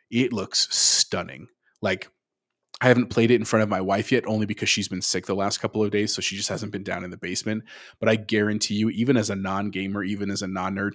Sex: male